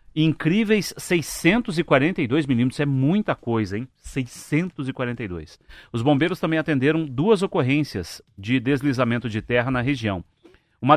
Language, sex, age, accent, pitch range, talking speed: Portuguese, male, 40-59, Brazilian, 120-150 Hz, 115 wpm